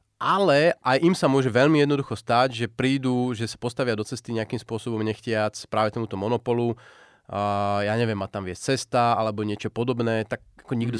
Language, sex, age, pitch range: Slovak, male, 30-49, 105-125 Hz